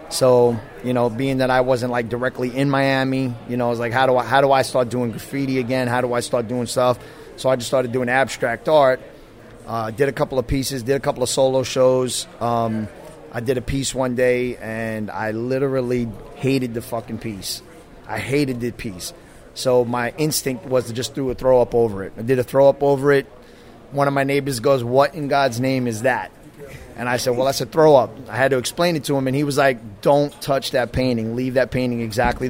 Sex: male